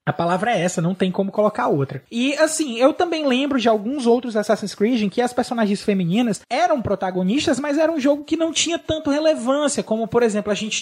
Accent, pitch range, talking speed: Brazilian, 210-275 Hz, 220 wpm